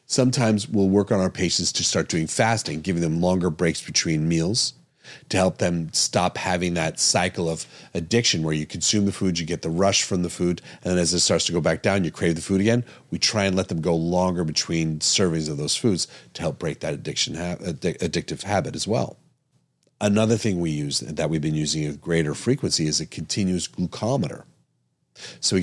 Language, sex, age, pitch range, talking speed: English, male, 40-59, 85-105 Hz, 210 wpm